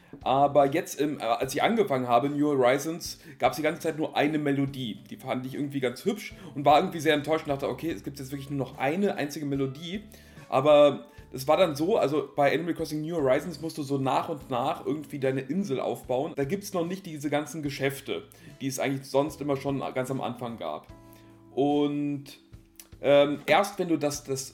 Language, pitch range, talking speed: German, 135-170 Hz, 210 wpm